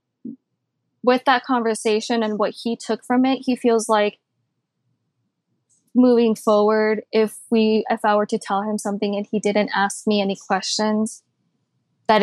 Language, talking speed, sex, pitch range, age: English, 150 wpm, female, 215-240 Hz, 20-39